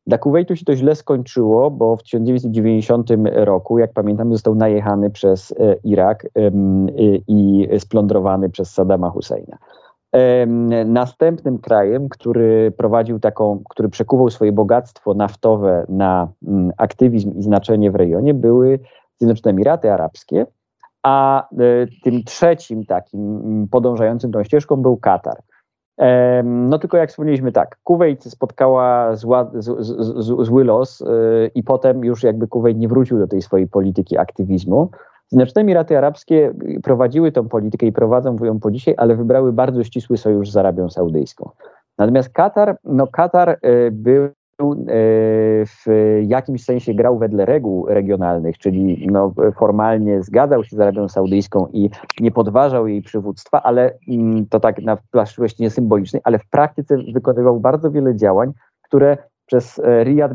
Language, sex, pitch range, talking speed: Polish, male, 105-130 Hz, 135 wpm